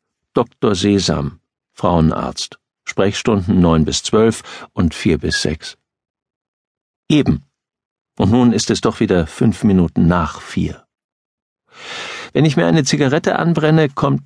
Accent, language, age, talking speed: German, German, 50-69, 120 wpm